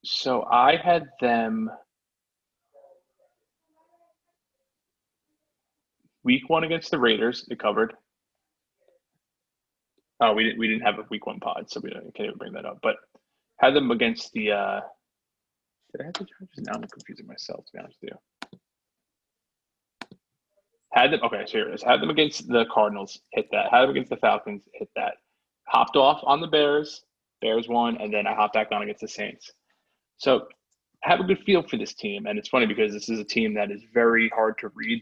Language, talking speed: English, 185 wpm